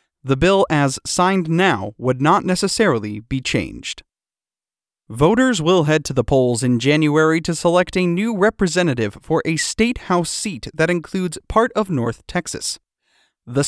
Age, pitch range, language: 30-49, 140-190 Hz, English